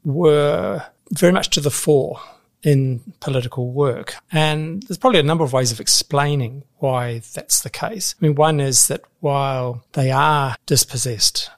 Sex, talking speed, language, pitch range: male, 160 wpm, English, 125-155 Hz